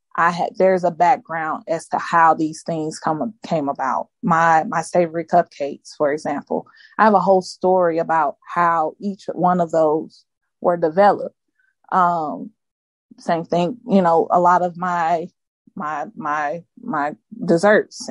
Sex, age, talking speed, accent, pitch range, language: female, 20-39, 150 wpm, American, 170-210 Hz, English